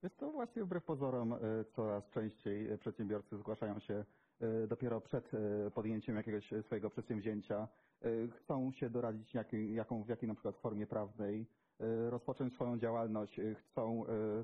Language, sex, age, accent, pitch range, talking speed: Polish, male, 30-49, native, 110-125 Hz, 120 wpm